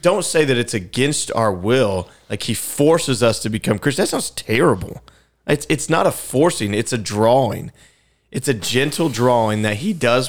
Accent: American